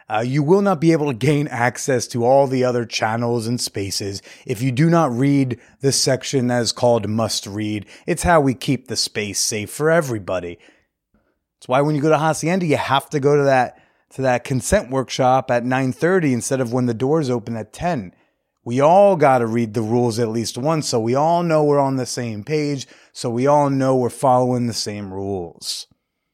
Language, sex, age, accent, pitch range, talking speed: English, male, 30-49, American, 120-150 Hz, 210 wpm